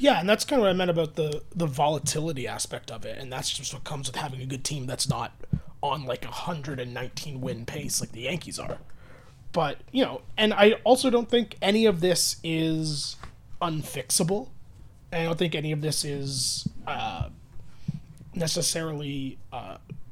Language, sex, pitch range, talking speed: English, male, 130-180 Hz, 180 wpm